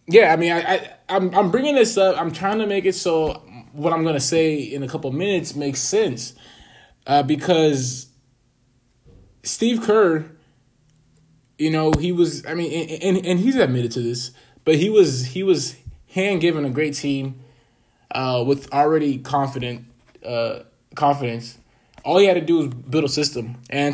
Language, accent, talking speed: English, American, 175 wpm